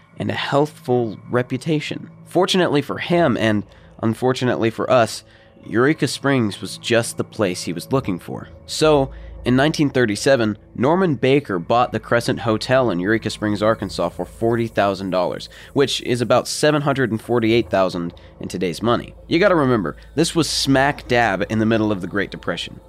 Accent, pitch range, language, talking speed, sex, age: American, 105-135 Hz, English, 150 wpm, male, 20-39